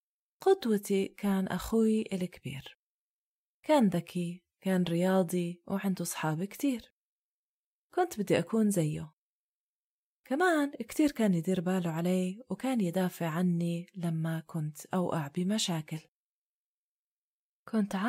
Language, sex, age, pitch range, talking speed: Arabic, female, 30-49, 170-220 Hz, 95 wpm